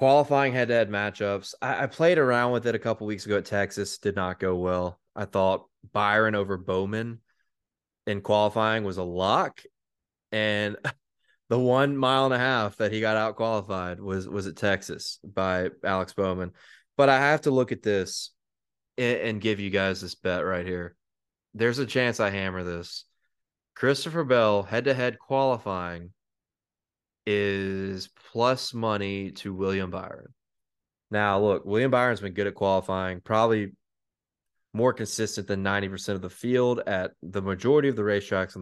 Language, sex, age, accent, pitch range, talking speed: English, male, 20-39, American, 95-120 Hz, 160 wpm